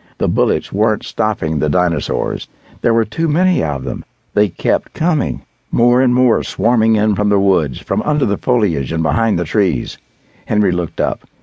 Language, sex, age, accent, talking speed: English, male, 60-79, American, 180 wpm